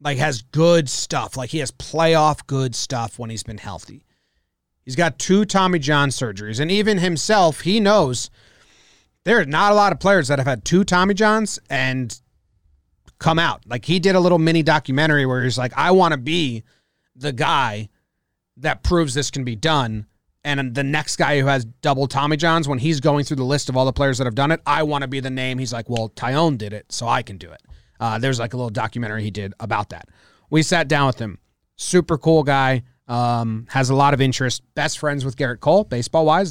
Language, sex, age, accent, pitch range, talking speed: English, male, 30-49, American, 120-160 Hz, 220 wpm